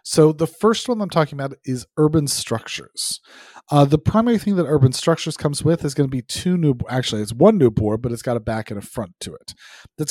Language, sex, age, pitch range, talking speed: English, male, 30-49, 115-150 Hz, 245 wpm